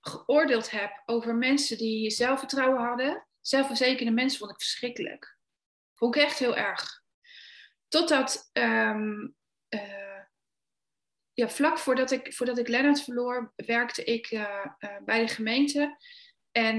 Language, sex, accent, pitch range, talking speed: Dutch, female, Dutch, 225-275 Hz, 130 wpm